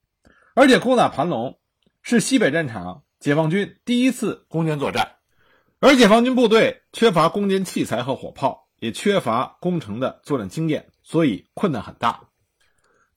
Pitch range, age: 160-235 Hz, 50-69